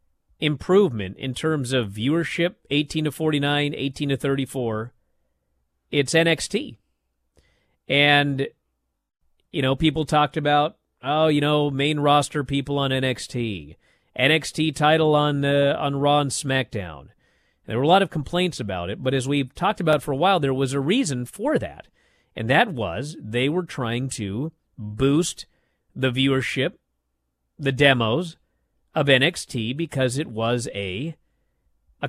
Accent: American